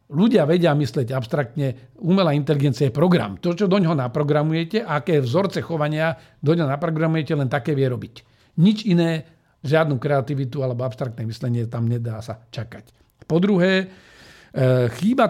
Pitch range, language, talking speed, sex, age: 135-175 Hz, Slovak, 145 wpm, male, 50-69